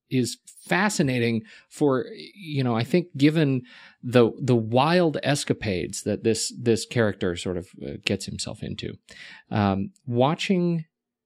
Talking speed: 125 wpm